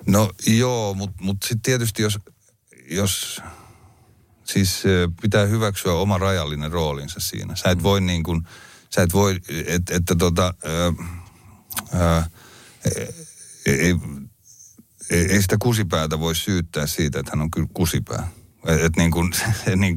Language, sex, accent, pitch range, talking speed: Finnish, male, native, 80-100 Hz, 140 wpm